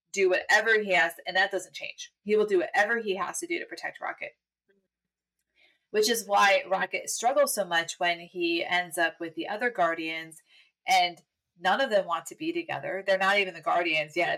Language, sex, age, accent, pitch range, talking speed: English, female, 30-49, American, 175-230 Hz, 205 wpm